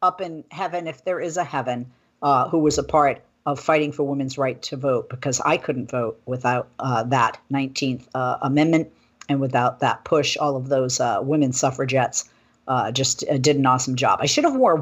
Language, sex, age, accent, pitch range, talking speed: English, female, 50-69, American, 140-170 Hz, 205 wpm